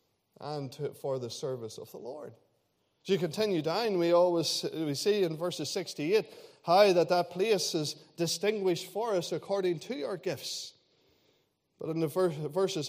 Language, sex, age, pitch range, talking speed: English, male, 20-39, 150-195 Hz, 165 wpm